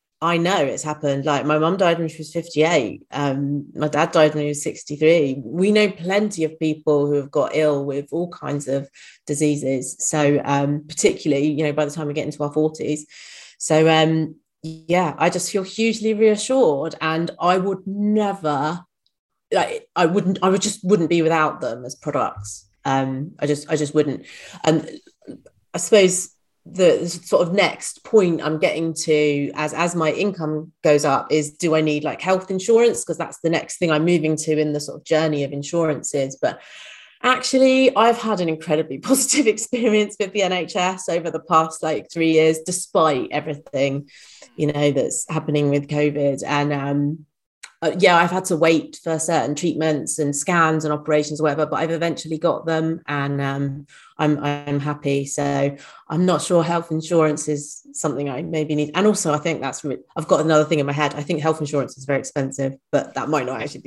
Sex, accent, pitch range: female, British, 145-175 Hz